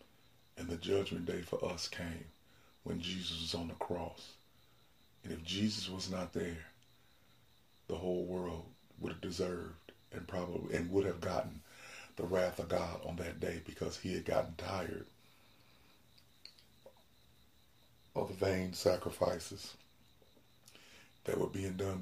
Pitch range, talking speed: 90-100 Hz, 140 wpm